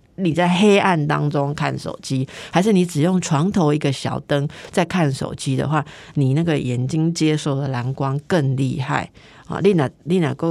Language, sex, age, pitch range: Chinese, female, 50-69, 135-175 Hz